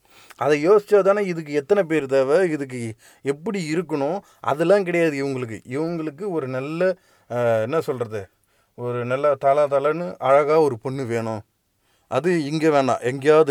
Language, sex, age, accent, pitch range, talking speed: English, male, 30-49, Indian, 125-165 Hz, 135 wpm